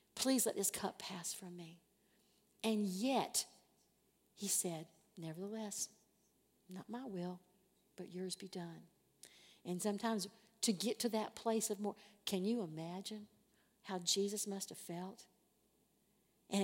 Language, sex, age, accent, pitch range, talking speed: English, female, 50-69, American, 180-215 Hz, 135 wpm